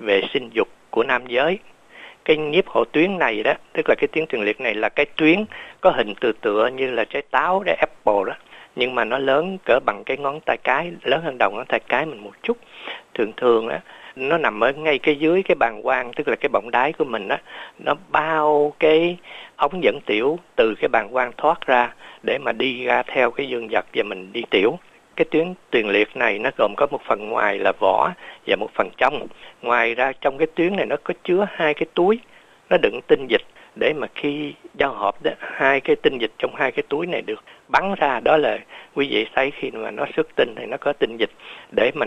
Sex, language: male, Vietnamese